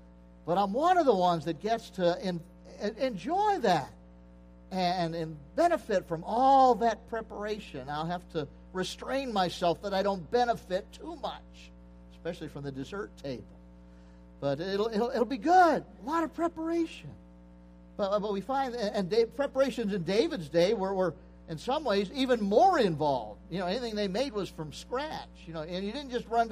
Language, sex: English, male